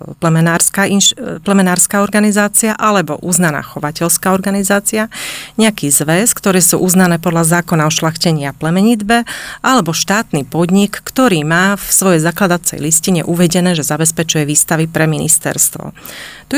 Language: Slovak